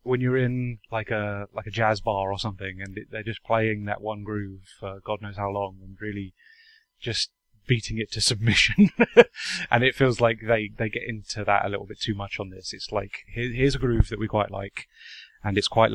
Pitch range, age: 100-120 Hz, 20-39